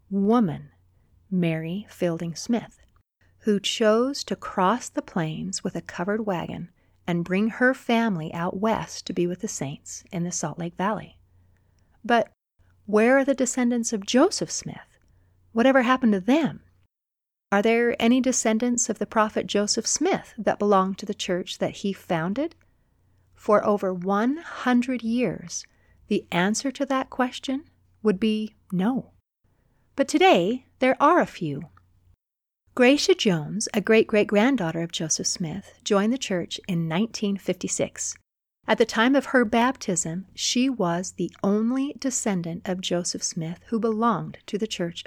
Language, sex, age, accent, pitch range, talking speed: English, female, 40-59, American, 175-240 Hz, 145 wpm